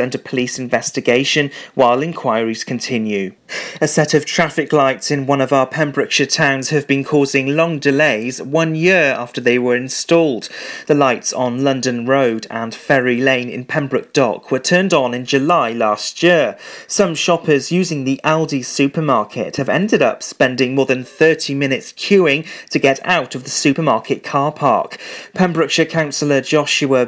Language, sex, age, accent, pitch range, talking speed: English, male, 30-49, British, 125-155 Hz, 160 wpm